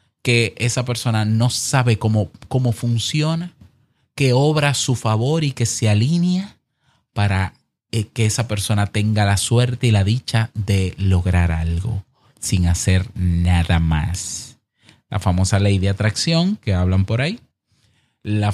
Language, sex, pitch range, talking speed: Spanish, male, 105-130 Hz, 140 wpm